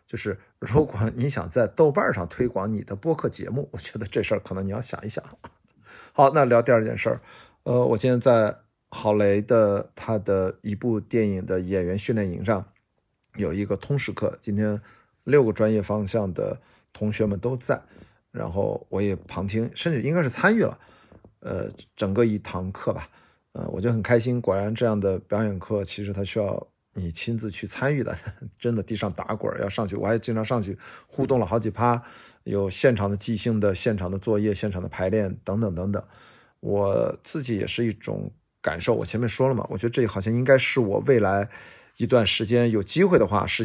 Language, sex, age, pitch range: Chinese, male, 50-69, 100-120 Hz